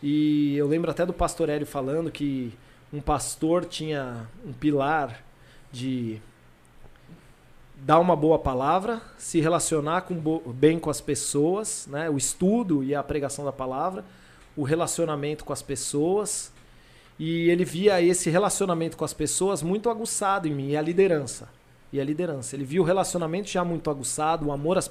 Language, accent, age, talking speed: Spanish, Brazilian, 40-59, 160 wpm